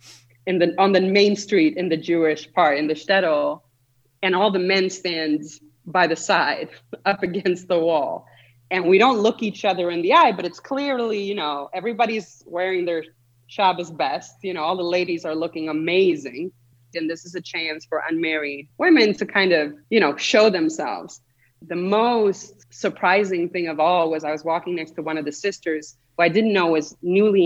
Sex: female